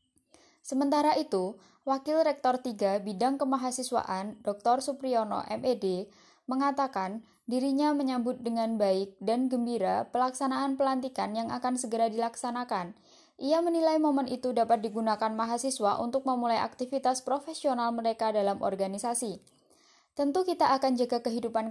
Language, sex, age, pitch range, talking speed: Indonesian, female, 10-29, 215-265 Hz, 115 wpm